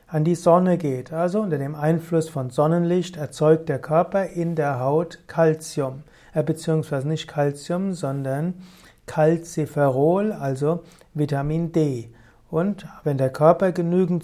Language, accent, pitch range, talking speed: German, German, 145-175 Hz, 125 wpm